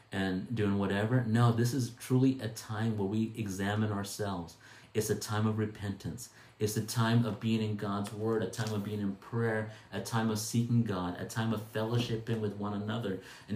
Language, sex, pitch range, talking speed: English, male, 100-115 Hz, 200 wpm